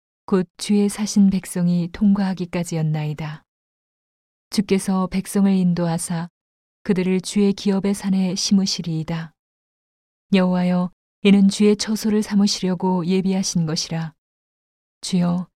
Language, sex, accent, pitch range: Korean, female, native, 170-195 Hz